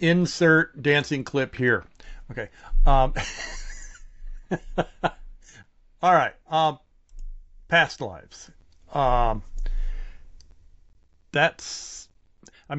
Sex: male